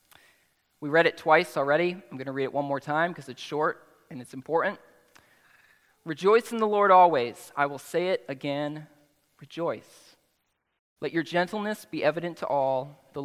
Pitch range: 135-180 Hz